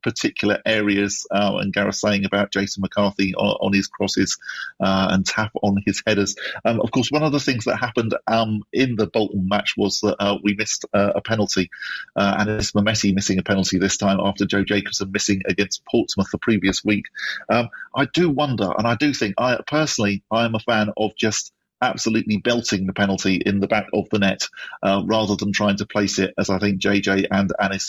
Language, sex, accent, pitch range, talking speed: English, male, British, 100-120 Hz, 210 wpm